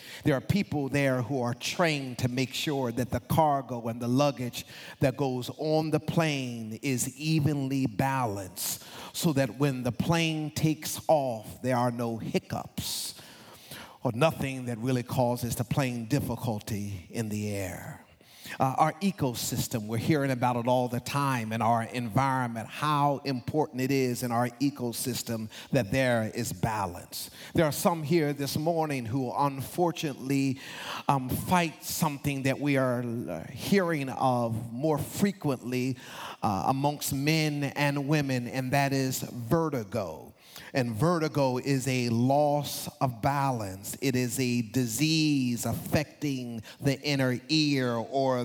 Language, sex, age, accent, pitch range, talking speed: English, male, 40-59, American, 120-145 Hz, 140 wpm